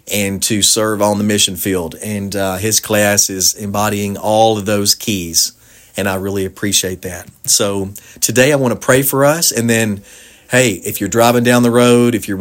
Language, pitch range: English, 95-110 Hz